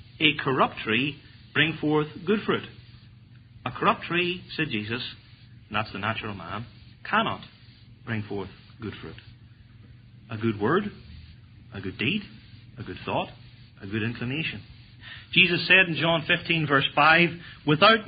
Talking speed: 135 wpm